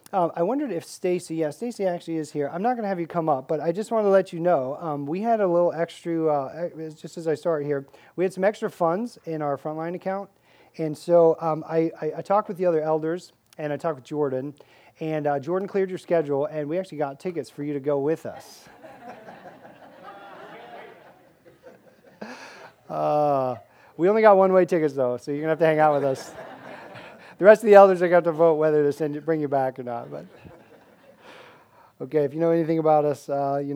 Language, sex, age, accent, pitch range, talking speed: English, male, 40-59, American, 140-170 Hz, 225 wpm